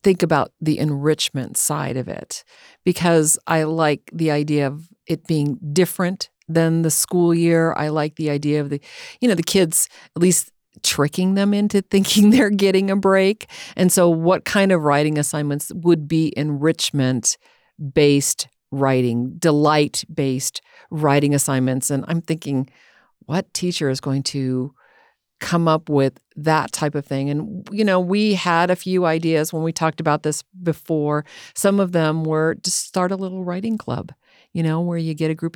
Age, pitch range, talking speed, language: 50-69, 150-180 Hz, 170 wpm, English